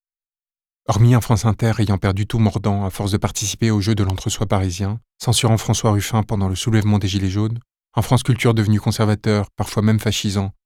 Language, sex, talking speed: French, male, 190 wpm